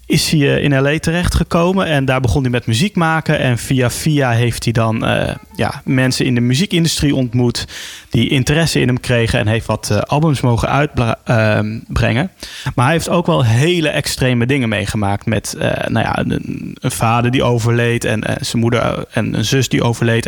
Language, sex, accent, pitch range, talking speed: Dutch, male, Dutch, 115-150 Hz, 195 wpm